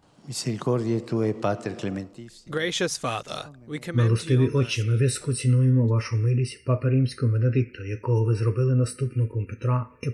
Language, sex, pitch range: Ukrainian, male, 115-130 Hz